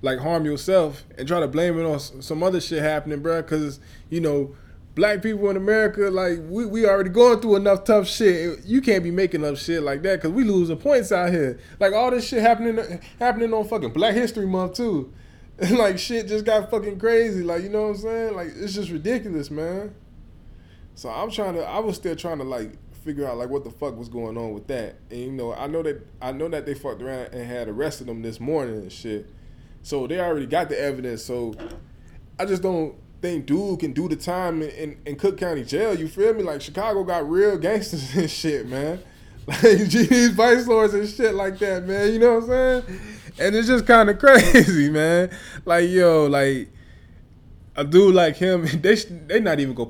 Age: 20-39